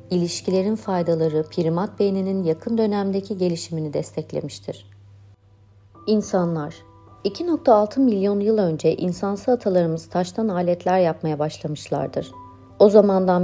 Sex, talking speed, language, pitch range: female, 95 wpm, Turkish, 160-205 Hz